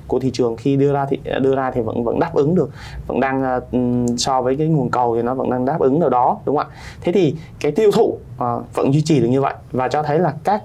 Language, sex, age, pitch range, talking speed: Vietnamese, male, 20-39, 120-145 Hz, 275 wpm